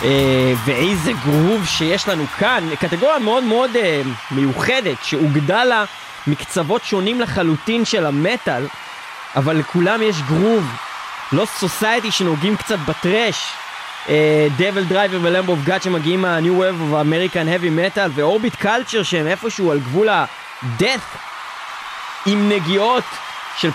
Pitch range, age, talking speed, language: 160-215 Hz, 20-39, 120 wpm, Hebrew